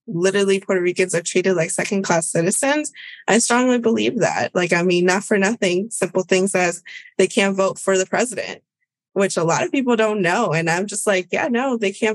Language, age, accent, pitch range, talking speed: English, 20-39, American, 170-200 Hz, 205 wpm